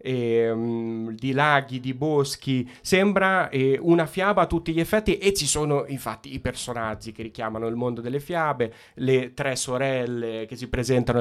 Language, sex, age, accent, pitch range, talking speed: Italian, male, 30-49, native, 120-145 Hz, 170 wpm